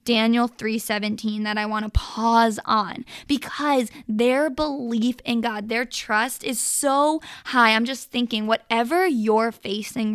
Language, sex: English, female